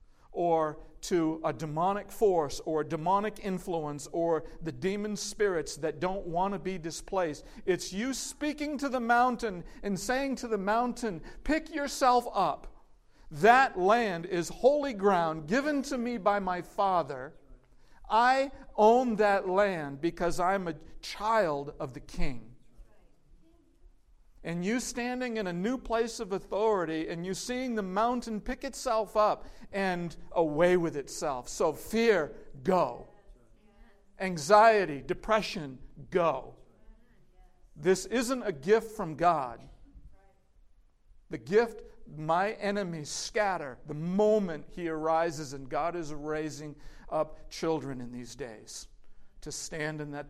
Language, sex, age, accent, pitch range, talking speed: English, male, 50-69, American, 160-230 Hz, 130 wpm